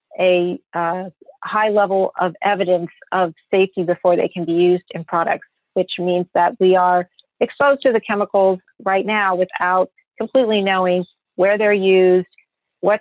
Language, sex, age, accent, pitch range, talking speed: English, female, 40-59, American, 180-200 Hz, 150 wpm